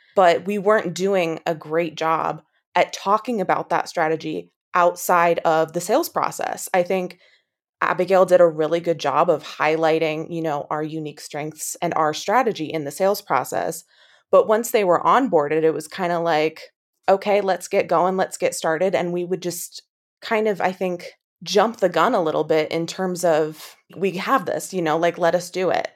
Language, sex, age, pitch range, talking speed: English, female, 20-39, 165-195 Hz, 190 wpm